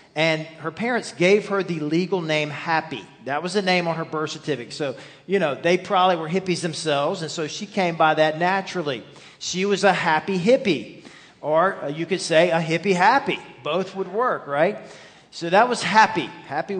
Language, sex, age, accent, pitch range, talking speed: English, male, 40-59, American, 145-185 Hz, 190 wpm